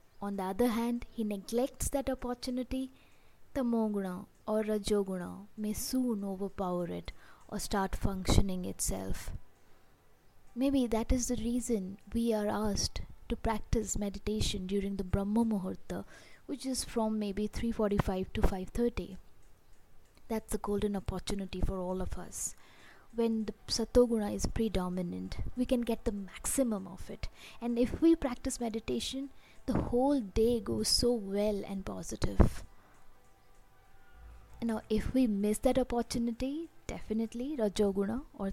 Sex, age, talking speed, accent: female, 20-39, 130 wpm, Indian